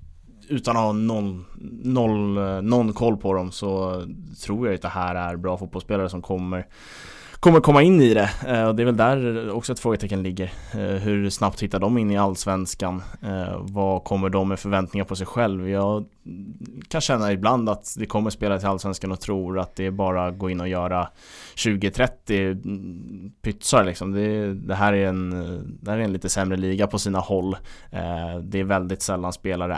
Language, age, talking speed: Swedish, 20-39, 175 wpm